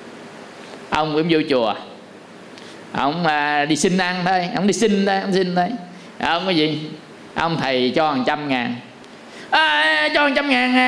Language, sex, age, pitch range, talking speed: Vietnamese, male, 20-39, 155-240 Hz, 165 wpm